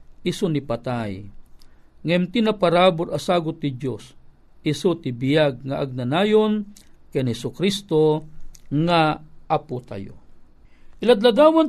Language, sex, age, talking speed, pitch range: Filipino, male, 50-69, 105 wpm, 160-235 Hz